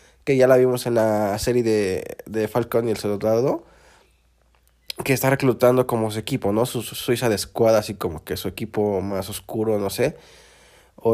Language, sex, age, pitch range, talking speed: Spanish, male, 20-39, 110-140 Hz, 190 wpm